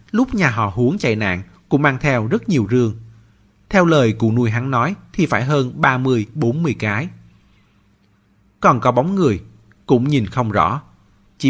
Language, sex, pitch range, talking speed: Vietnamese, male, 105-150 Hz, 165 wpm